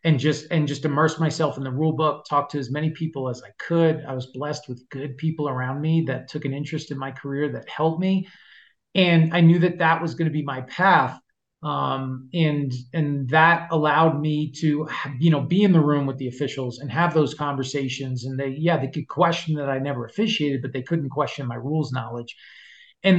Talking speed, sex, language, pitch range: 215 wpm, male, English, 140-165 Hz